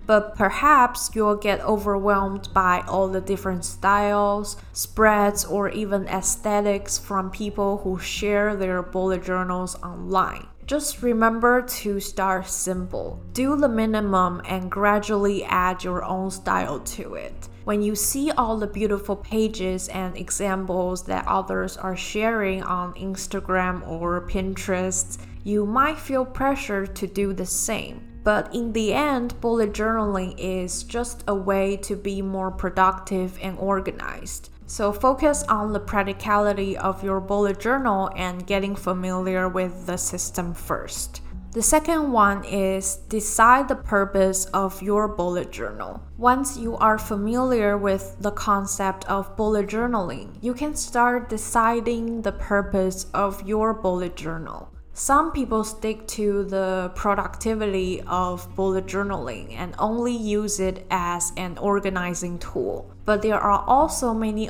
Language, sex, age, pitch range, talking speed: English, female, 10-29, 185-215 Hz, 140 wpm